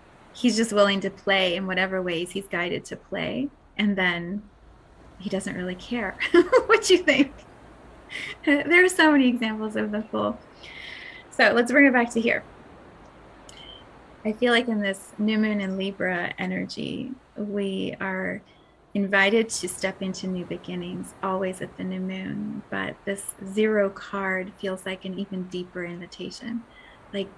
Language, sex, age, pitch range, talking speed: English, female, 30-49, 185-220 Hz, 155 wpm